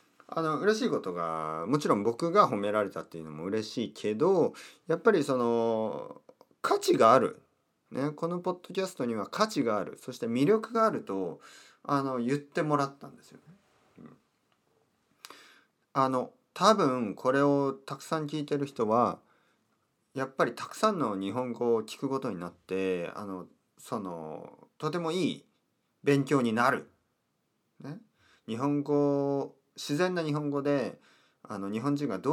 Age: 40-59